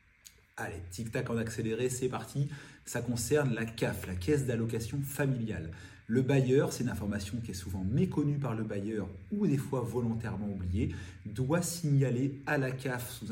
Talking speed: 170 wpm